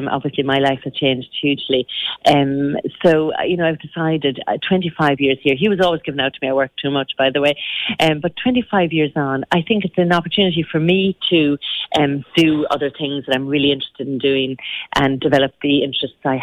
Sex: female